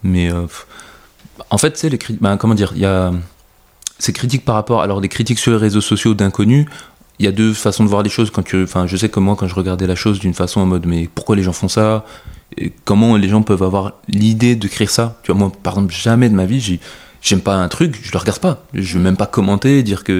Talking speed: 260 wpm